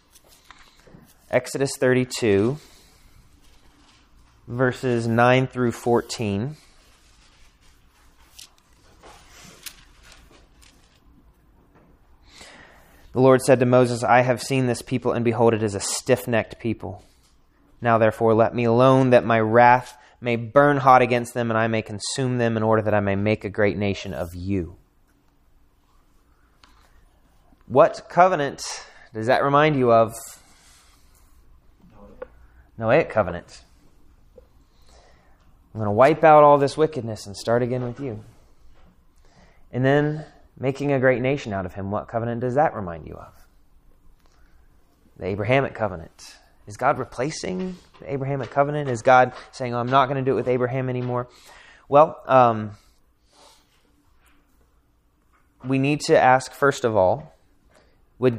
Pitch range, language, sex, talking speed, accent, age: 95-130 Hz, English, male, 125 wpm, American, 30-49